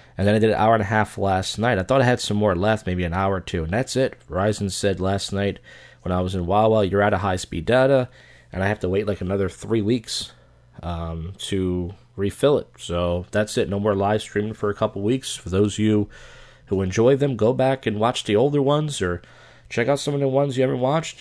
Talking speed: 250 wpm